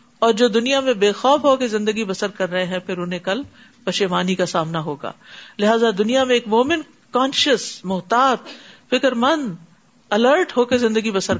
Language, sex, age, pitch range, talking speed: Urdu, female, 50-69, 185-235 Hz, 180 wpm